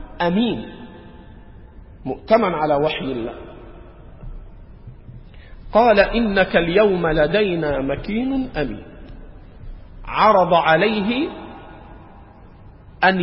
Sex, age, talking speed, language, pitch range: male, 50-69, 65 wpm, Arabic, 145-240 Hz